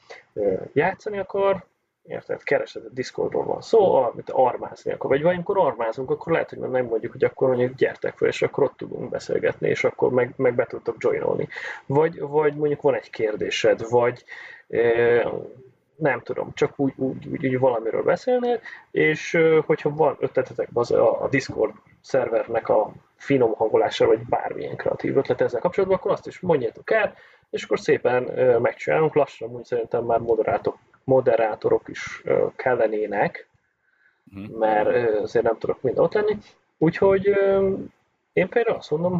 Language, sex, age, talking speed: Hungarian, male, 30-49, 150 wpm